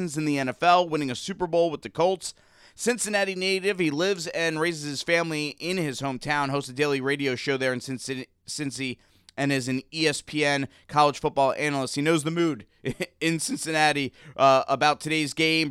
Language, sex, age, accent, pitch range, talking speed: English, male, 30-49, American, 125-160 Hz, 180 wpm